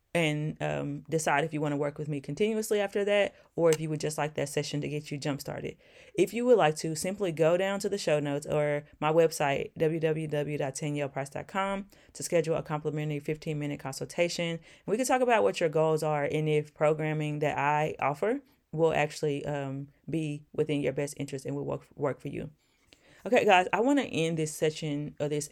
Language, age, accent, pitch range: English, 20-39, American, 145-170 Hz